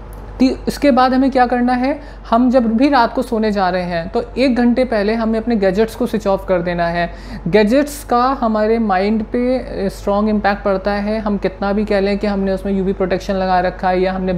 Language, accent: Hindi, native